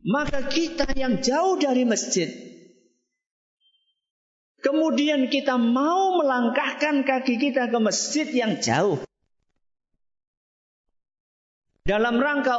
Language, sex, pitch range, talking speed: Malay, male, 190-285 Hz, 85 wpm